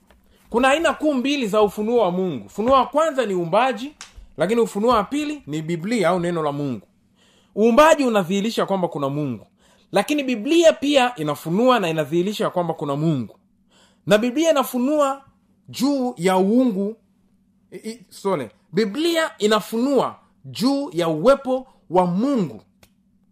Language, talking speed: Swahili, 130 wpm